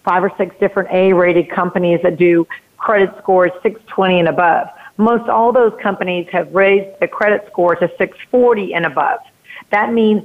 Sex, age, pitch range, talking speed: female, 40-59, 175-205 Hz, 165 wpm